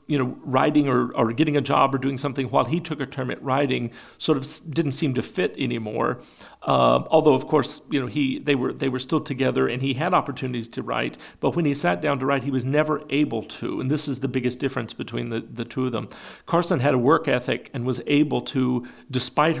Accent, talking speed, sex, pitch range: American, 240 wpm, male, 125-145 Hz